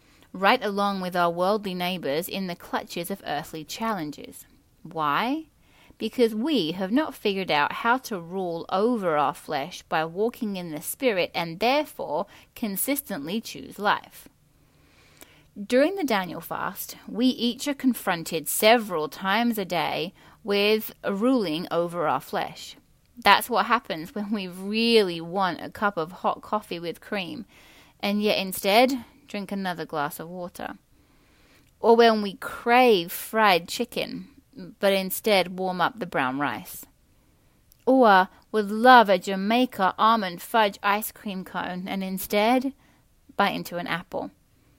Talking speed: 140 wpm